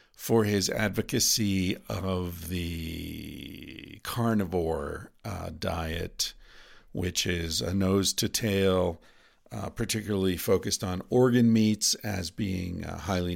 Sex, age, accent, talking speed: male, 50-69, American, 110 wpm